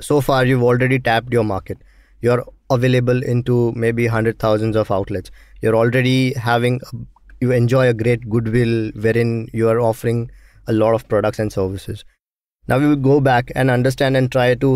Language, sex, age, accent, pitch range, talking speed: English, male, 20-39, Indian, 115-145 Hz, 170 wpm